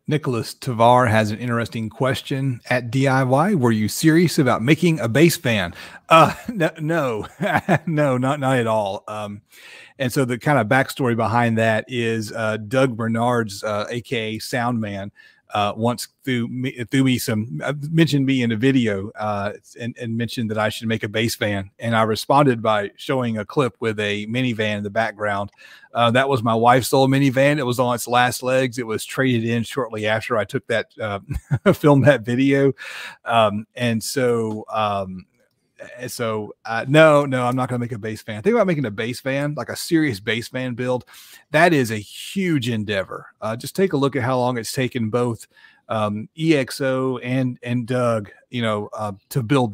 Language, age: English, 40-59